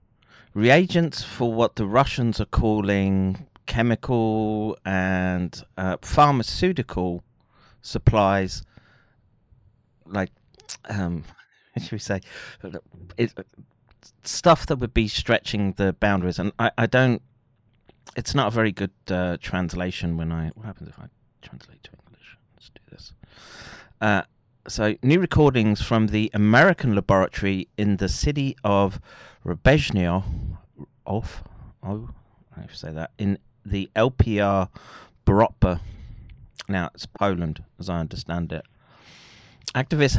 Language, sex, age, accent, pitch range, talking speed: English, male, 30-49, British, 95-120 Hz, 115 wpm